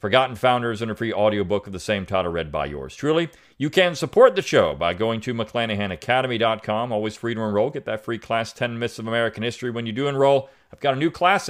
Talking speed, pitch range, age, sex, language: 235 wpm, 110-140 Hz, 40-59, male, English